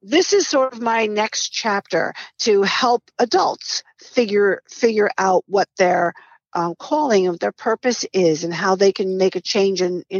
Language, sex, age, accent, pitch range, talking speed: English, female, 50-69, American, 185-235 Hz, 175 wpm